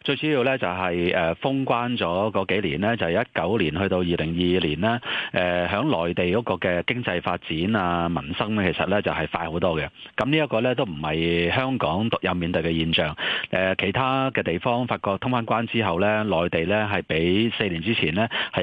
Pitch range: 85-115 Hz